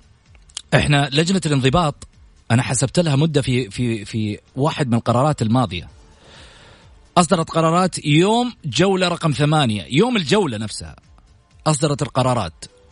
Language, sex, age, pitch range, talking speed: Arabic, male, 40-59, 120-180 Hz, 110 wpm